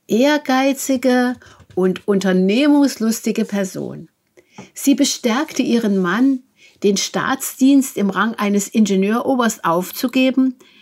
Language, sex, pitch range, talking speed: German, female, 195-260 Hz, 85 wpm